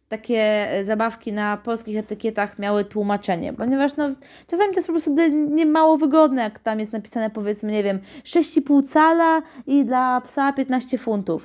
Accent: native